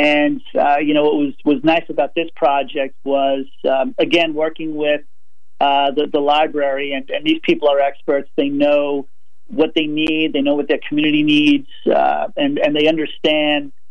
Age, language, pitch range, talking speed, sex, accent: 40-59, English, 140-160 Hz, 180 wpm, male, American